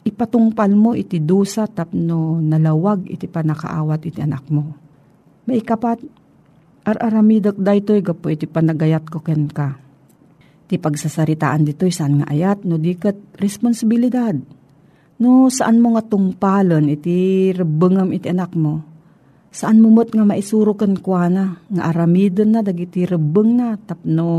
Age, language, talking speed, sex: 40-59, Filipino, 135 wpm, female